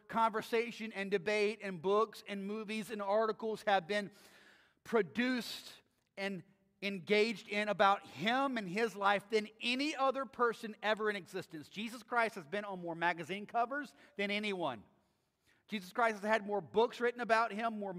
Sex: male